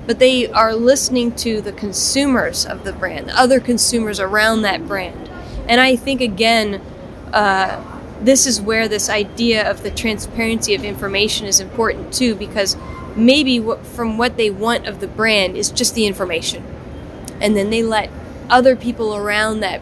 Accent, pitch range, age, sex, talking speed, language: American, 205-245 Hz, 20-39, female, 165 wpm, English